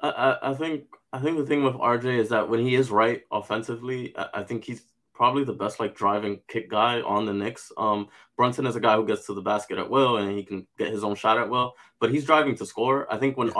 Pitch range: 105-130 Hz